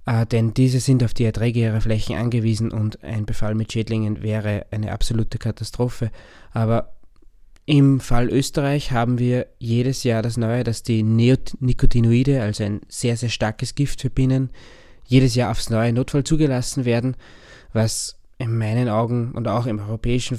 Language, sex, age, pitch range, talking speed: German, male, 20-39, 110-125 Hz, 160 wpm